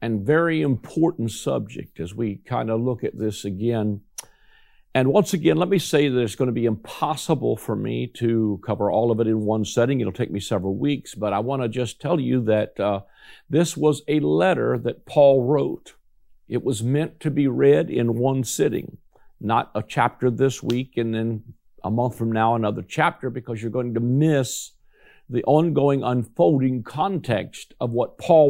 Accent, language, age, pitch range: American, English, 50-69, 115-145 Hz